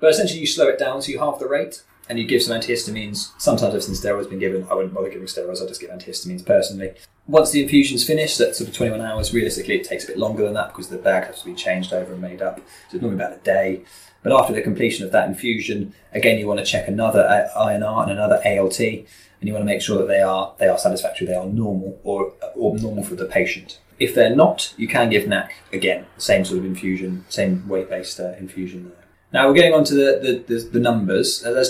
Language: English